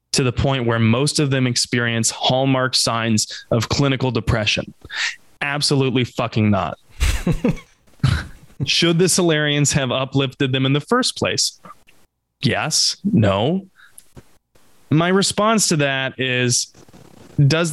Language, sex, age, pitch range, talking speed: English, male, 20-39, 115-145 Hz, 115 wpm